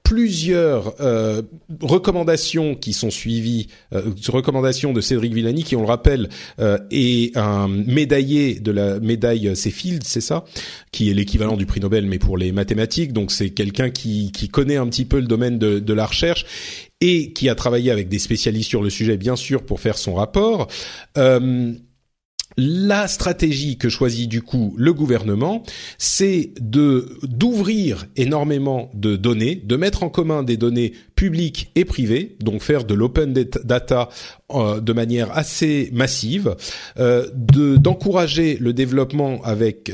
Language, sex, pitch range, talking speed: French, male, 110-145 Hz, 155 wpm